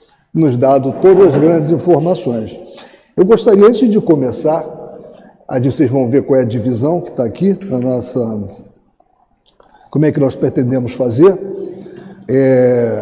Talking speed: 145 wpm